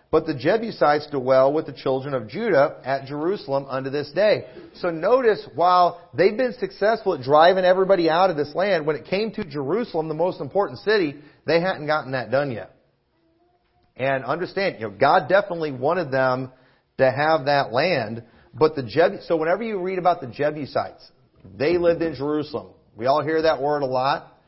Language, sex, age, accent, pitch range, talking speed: English, male, 40-59, American, 130-175 Hz, 185 wpm